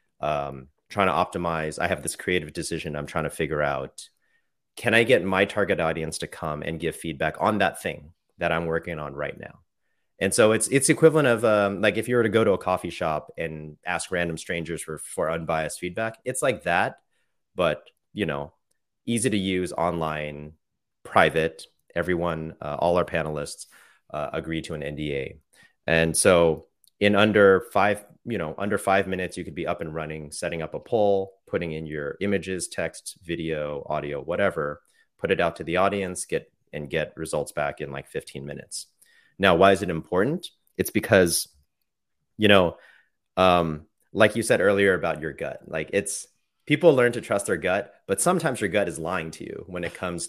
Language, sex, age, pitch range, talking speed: English, male, 30-49, 80-100 Hz, 190 wpm